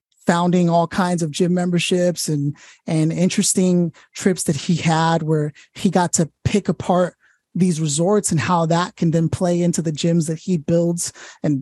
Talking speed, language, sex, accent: 175 wpm, English, male, American